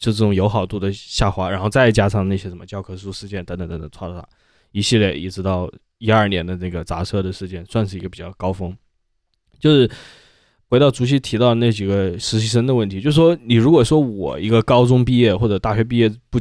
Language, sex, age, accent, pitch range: Chinese, male, 20-39, native, 95-120 Hz